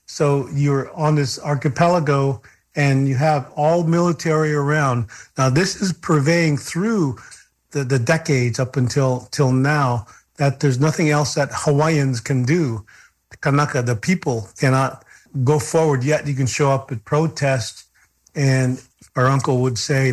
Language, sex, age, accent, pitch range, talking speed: English, male, 40-59, American, 125-150 Hz, 150 wpm